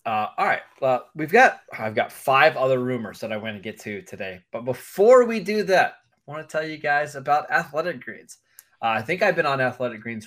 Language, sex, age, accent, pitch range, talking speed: English, male, 20-39, American, 115-140 Hz, 235 wpm